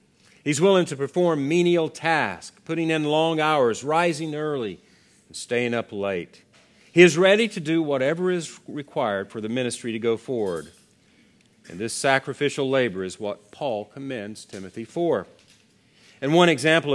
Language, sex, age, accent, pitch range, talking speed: English, male, 50-69, American, 115-160 Hz, 150 wpm